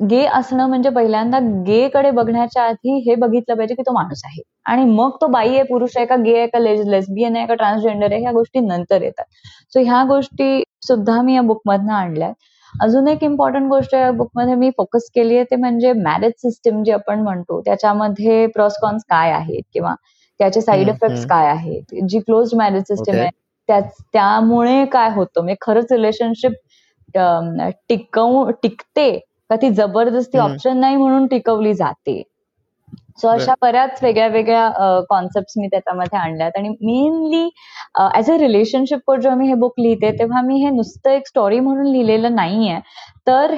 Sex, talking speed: female, 165 wpm